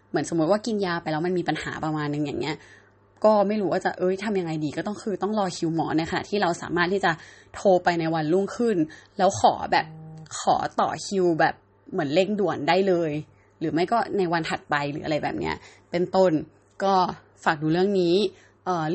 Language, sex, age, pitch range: Thai, female, 20-39, 160-195 Hz